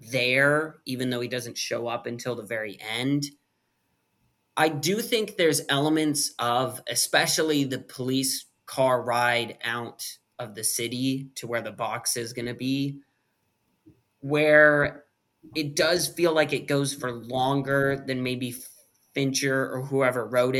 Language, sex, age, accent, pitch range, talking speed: English, male, 20-39, American, 125-145 Hz, 145 wpm